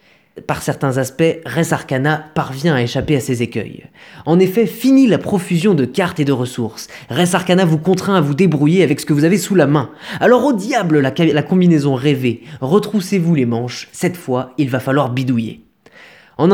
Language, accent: French, French